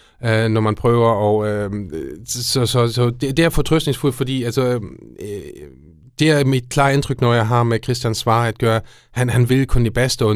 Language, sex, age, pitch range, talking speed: Danish, male, 30-49, 110-125 Hz, 195 wpm